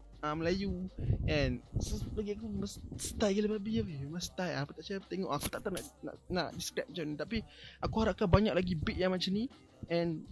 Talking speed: 215 wpm